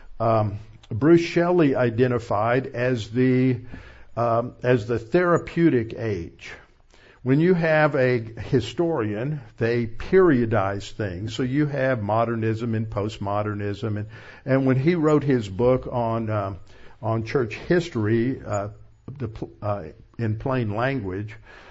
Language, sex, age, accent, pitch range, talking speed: English, male, 50-69, American, 110-135 Hz, 120 wpm